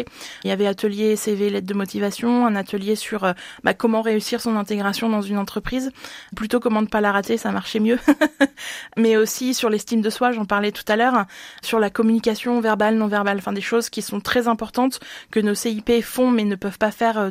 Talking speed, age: 210 wpm, 20-39